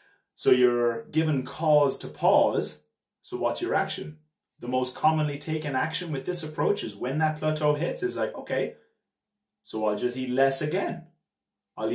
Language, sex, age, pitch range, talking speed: English, male, 30-49, 130-170 Hz, 165 wpm